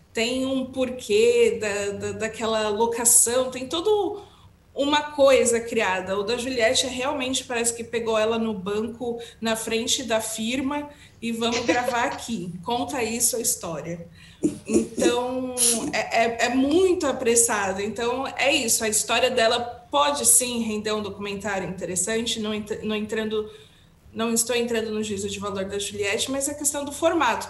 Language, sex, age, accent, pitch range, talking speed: Portuguese, female, 20-39, Brazilian, 210-255 Hz, 150 wpm